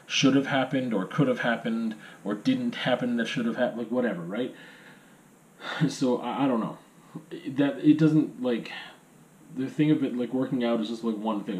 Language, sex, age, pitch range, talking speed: English, male, 30-49, 110-155 Hz, 195 wpm